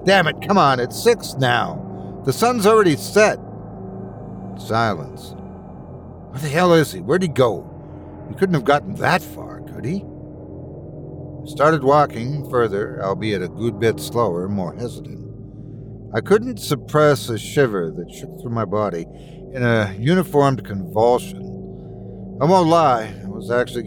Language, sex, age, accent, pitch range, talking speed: English, male, 60-79, American, 100-145 Hz, 150 wpm